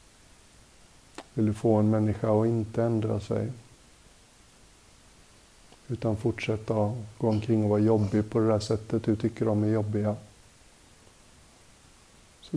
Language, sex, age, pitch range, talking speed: Swedish, male, 50-69, 105-115 Hz, 120 wpm